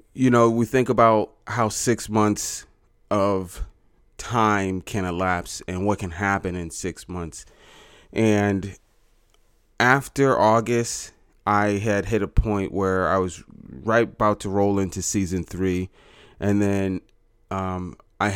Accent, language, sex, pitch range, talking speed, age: American, English, male, 95-110 Hz, 135 wpm, 30-49